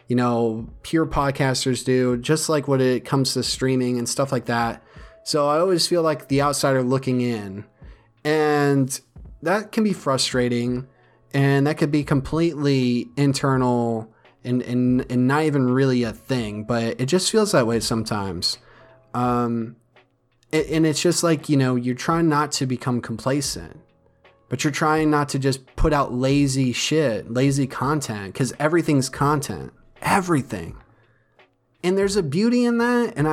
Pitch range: 125-150 Hz